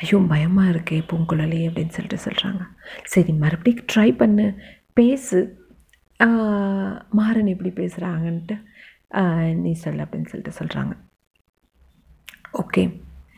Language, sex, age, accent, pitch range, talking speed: Tamil, female, 30-49, native, 175-210 Hz, 95 wpm